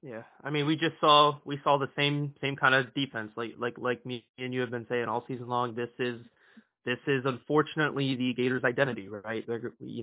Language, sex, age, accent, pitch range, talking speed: English, male, 20-39, American, 120-145 Hz, 220 wpm